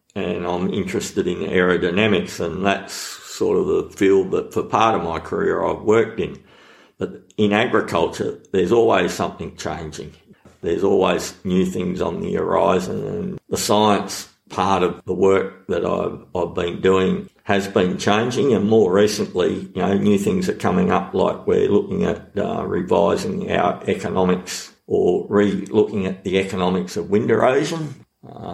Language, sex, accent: English, male, Australian